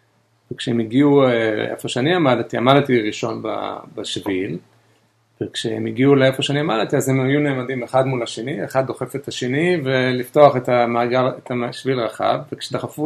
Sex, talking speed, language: male, 145 wpm, Hebrew